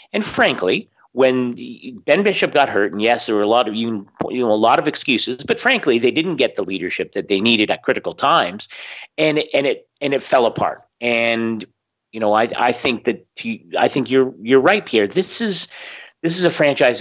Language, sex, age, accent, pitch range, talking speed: English, male, 40-59, American, 105-155 Hz, 210 wpm